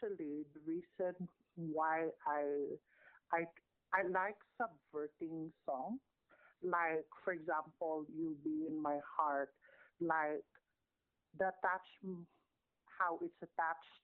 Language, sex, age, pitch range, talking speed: English, male, 50-69, 150-180 Hz, 100 wpm